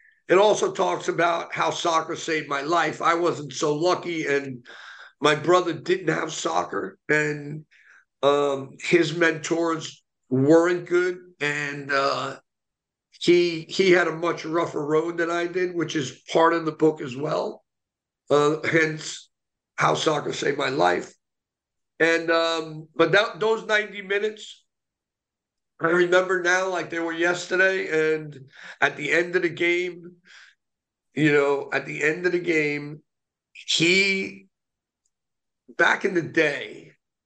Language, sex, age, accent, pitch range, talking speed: English, male, 50-69, American, 155-180 Hz, 140 wpm